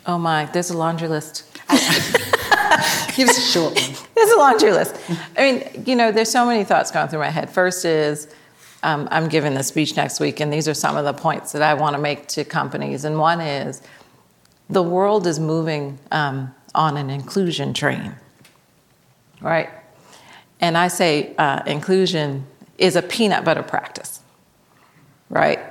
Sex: female